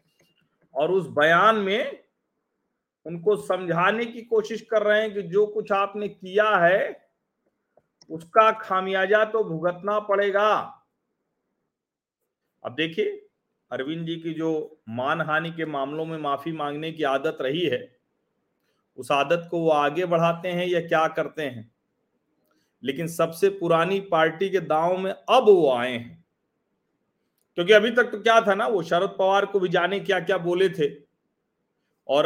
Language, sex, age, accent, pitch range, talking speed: Hindi, male, 40-59, native, 165-215 Hz, 145 wpm